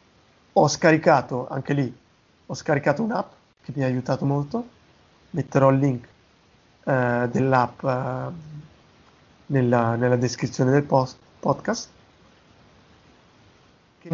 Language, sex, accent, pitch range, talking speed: Italian, male, native, 130-155 Hz, 105 wpm